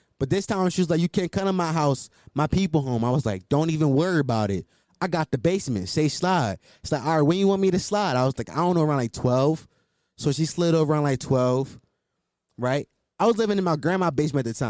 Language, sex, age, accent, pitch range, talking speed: English, male, 20-39, American, 135-195 Hz, 265 wpm